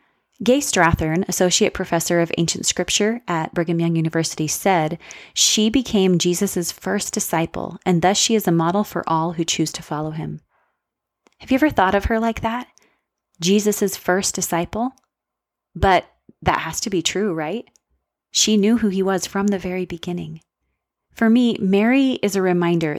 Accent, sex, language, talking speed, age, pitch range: American, female, English, 165 wpm, 30-49, 170-205 Hz